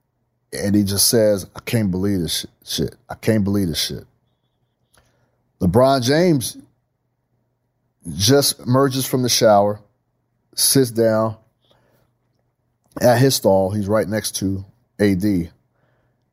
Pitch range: 100-125 Hz